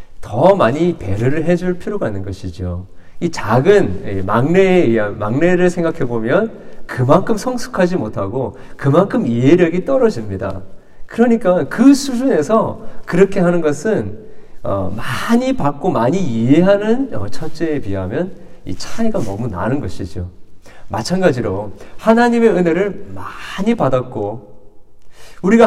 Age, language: 40-59, Korean